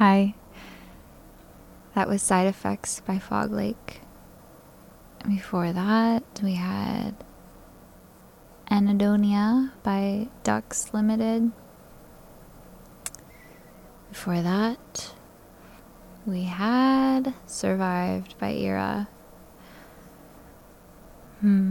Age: 10-29